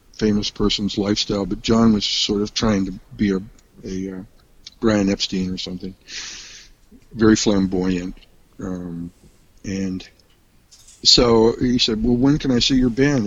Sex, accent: male, American